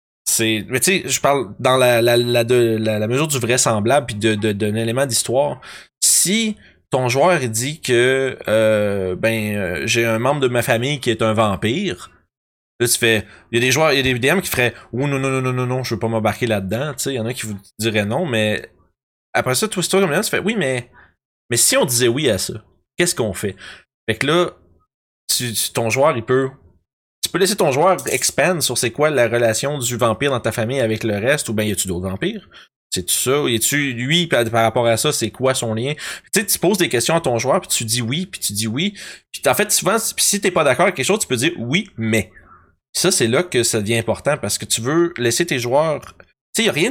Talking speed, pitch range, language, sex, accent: 250 wpm, 110-140 Hz, French, male, Canadian